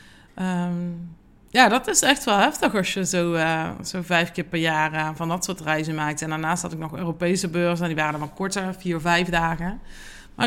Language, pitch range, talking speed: Dutch, 170-225 Hz, 230 wpm